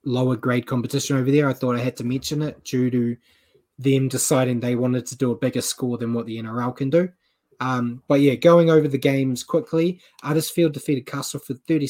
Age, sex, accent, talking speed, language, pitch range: 20-39, male, Australian, 210 wpm, English, 125-145 Hz